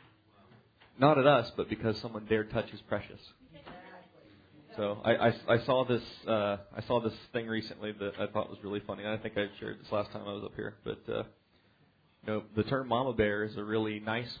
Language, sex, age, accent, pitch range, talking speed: English, male, 30-49, American, 105-120 Hz, 215 wpm